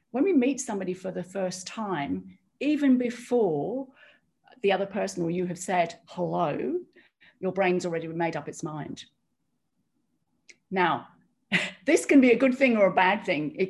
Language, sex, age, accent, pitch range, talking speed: English, female, 50-69, British, 175-220 Hz, 160 wpm